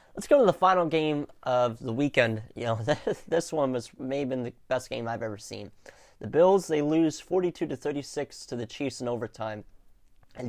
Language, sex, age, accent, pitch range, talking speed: English, male, 20-39, American, 115-140 Hz, 205 wpm